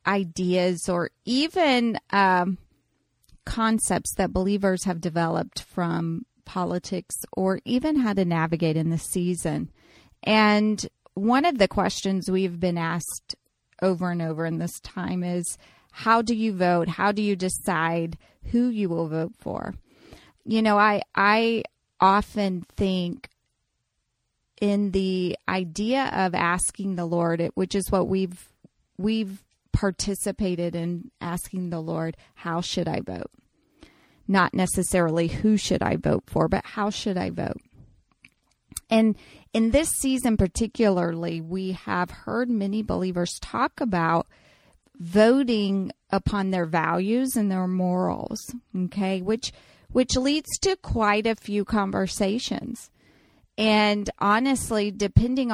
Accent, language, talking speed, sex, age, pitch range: American, English, 125 wpm, female, 30-49, 180-220 Hz